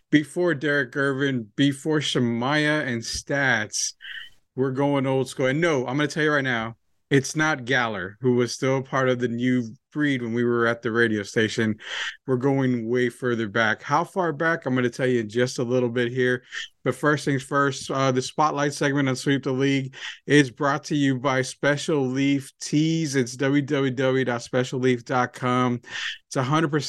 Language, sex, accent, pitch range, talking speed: English, male, American, 125-150 Hz, 180 wpm